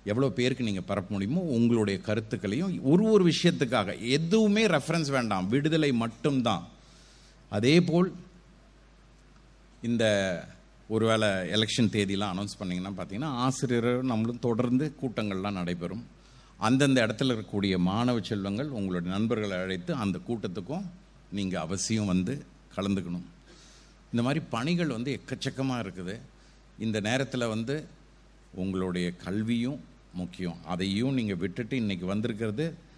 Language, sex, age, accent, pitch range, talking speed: Tamil, male, 50-69, native, 100-140 Hz, 110 wpm